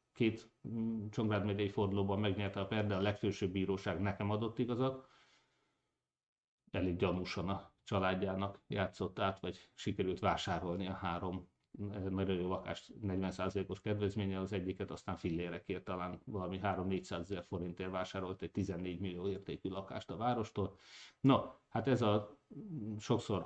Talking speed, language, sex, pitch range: 135 wpm, Hungarian, male, 95-110 Hz